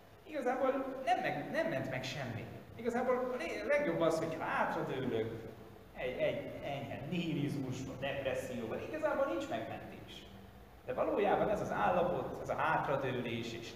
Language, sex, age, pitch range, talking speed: Hungarian, male, 20-39, 115-160 Hz, 125 wpm